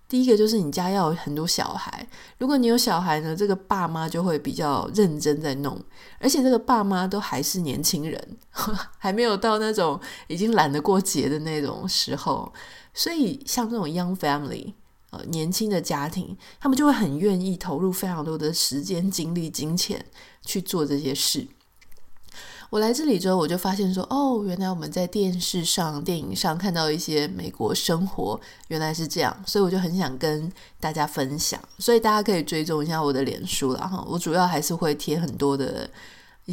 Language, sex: Chinese, female